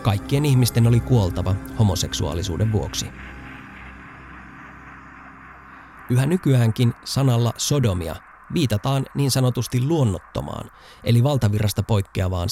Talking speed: 80 wpm